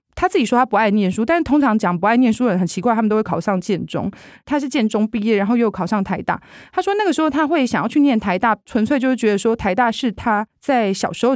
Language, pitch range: Chinese, 195-255 Hz